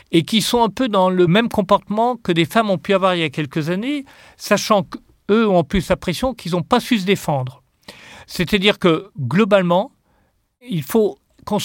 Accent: French